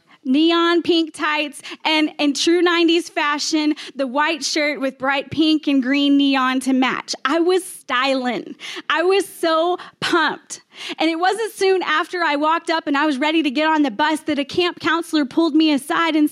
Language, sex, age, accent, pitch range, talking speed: English, female, 20-39, American, 280-345 Hz, 190 wpm